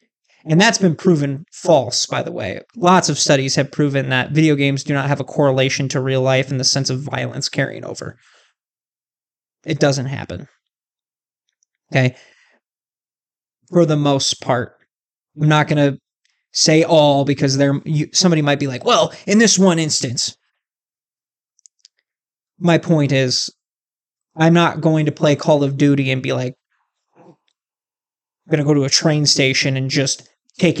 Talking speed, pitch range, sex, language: 160 wpm, 140-165 Hz, male, English